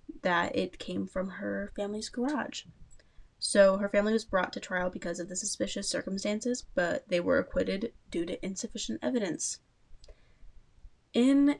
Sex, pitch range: female, 185-255 Hz